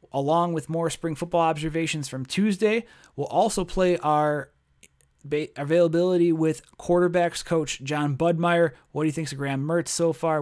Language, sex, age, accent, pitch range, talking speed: English, male, 30-49, American, 145-180 Hz, 160 wpm